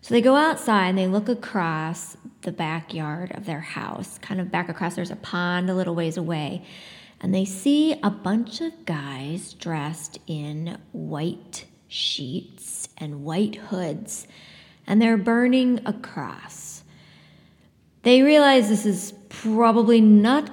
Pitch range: 170-215 Hz